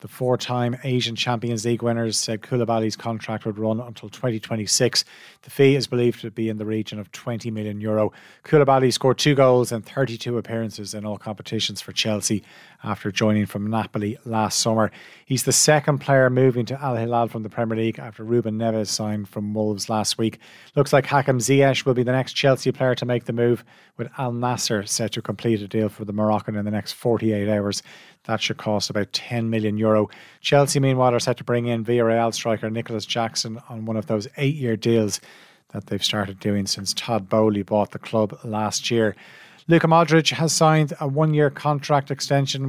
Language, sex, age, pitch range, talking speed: English, male, 30-49, 110-130 Hz, 190 wpm